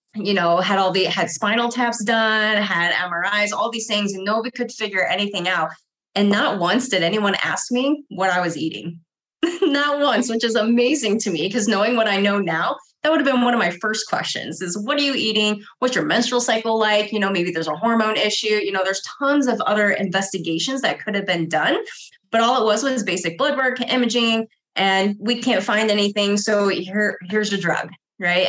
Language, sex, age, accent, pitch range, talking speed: English, female, 20-39, American, 190-235 Hz, 215 wpm